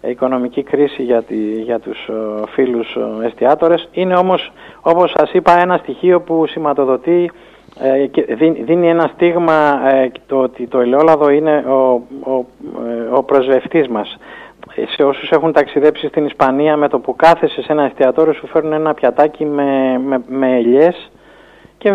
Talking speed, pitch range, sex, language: 145 wpm, 130-175 Hz, male, Greek